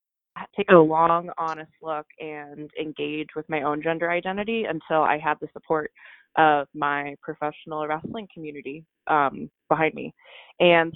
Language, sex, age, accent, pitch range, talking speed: English, female, 20-39, American, 150-175 Hz, 140 wpm